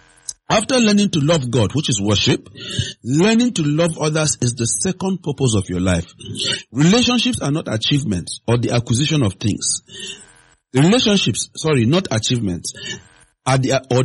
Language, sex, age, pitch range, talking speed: English, male, 50-69, 110-155 Hz, 140 wpm